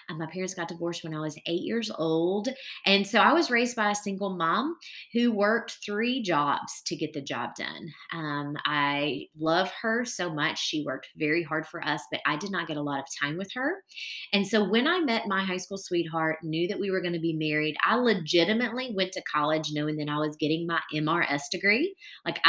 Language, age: English, 30-49